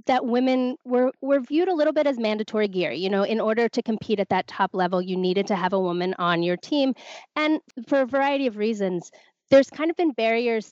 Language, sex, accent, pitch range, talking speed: English, female, American, 185-235 Hz, 230 wpm